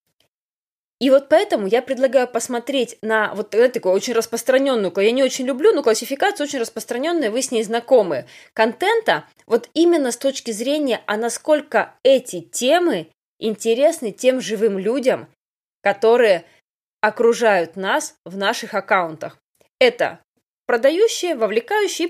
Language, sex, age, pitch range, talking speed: Russian, female, 20-39, 215-280 Hz, 125 wpm